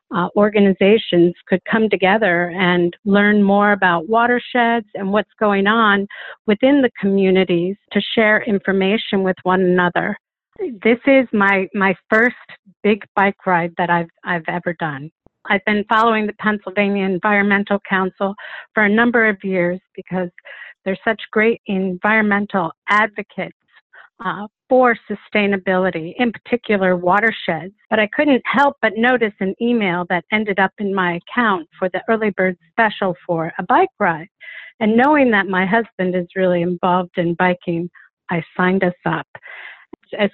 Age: 50-69